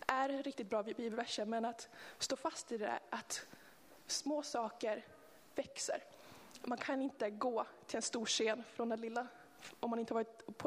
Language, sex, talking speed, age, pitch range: Swedish, female, 175 wpm, 20-39, 220-255 Hz